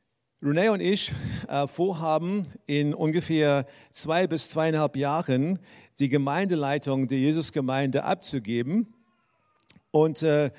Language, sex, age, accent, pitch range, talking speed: German, male, 50-69, German, 145-180 Hz, 90 wpm